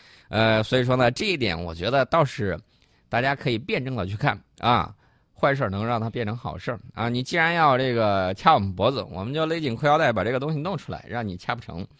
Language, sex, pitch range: Chinese, male, 95-140 Hz